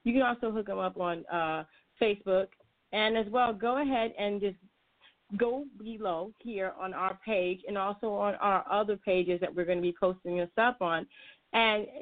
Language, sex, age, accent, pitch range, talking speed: English, female, 30-49, American, 190-240 Hz, 190 wpm